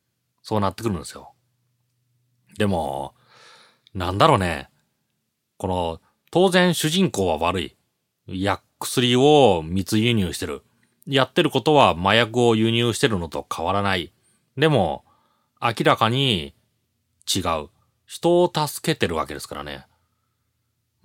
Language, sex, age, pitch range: Japanese, male, 30-49, 95-140 Hz